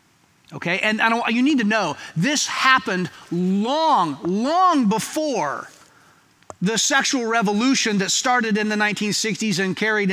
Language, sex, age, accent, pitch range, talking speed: English, male, 30-49, American, 185-245 Hz, 135 wpm